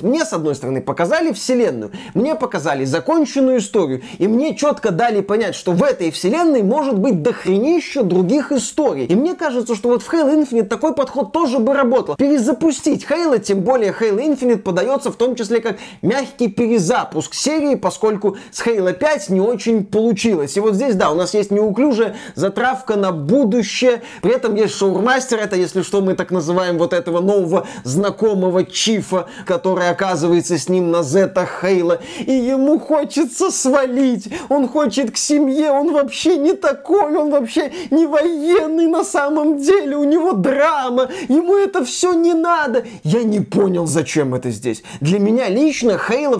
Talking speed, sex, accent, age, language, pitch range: 165 wpm, male, native, 20-39, Russian, 185-275 Hz